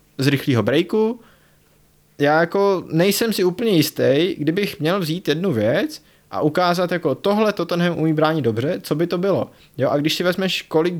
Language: Czech